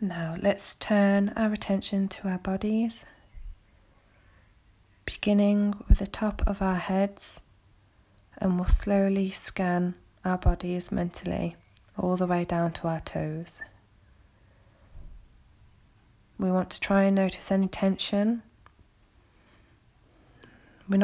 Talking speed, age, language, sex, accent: 110 wpm, 20-39, English, female, British